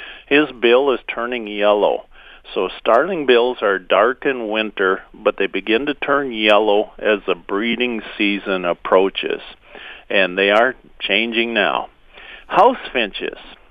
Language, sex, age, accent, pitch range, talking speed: English, male, 50-69, American, 105-125 Hz, 130 wpm